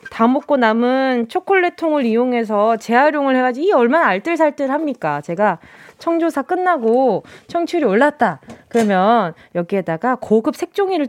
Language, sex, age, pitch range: Korean, female, 20-39, 220-350 Hz